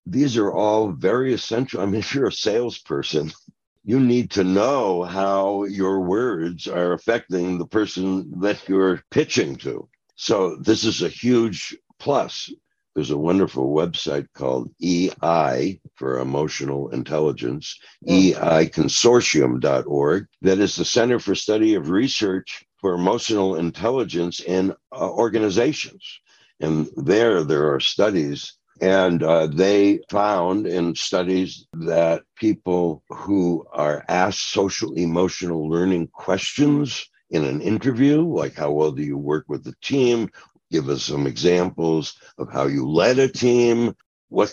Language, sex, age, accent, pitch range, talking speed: English, male, 60-79, American, 80-105 Hz, 130 wpm